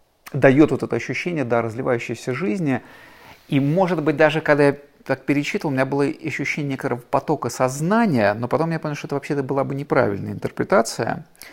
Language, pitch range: Russian, 125-150 Hz